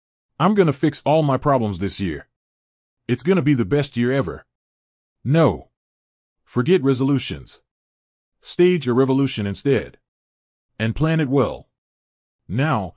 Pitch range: 100-140 Hz